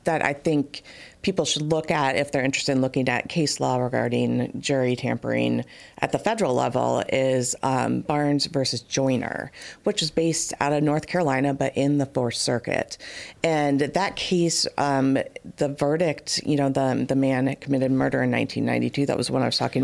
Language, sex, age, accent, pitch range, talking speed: English, female, 40-59, American, 130-155 Hz, 180 wpm